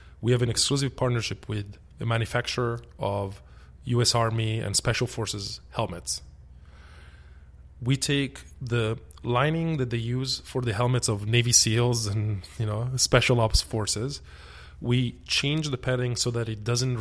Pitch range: 100-125 Hz